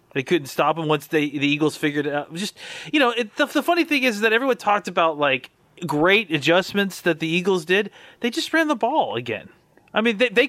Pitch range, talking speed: 150-200 Hz, 235 wpm